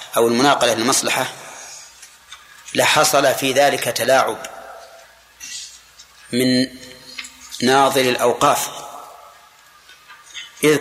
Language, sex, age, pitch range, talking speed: Arabic, male, 30-49, 125-155 Hz, 60 wpm